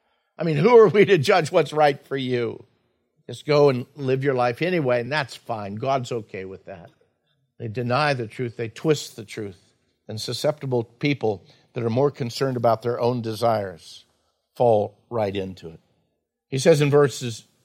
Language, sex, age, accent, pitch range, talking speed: English, male, 50-69, American, 120-145 Hz, 175 wpm